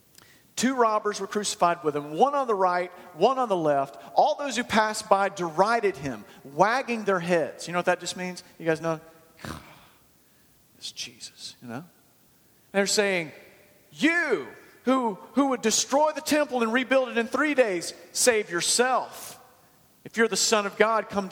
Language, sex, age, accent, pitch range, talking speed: English, male, 40-59, American, 155-220 Hz, 170 wpm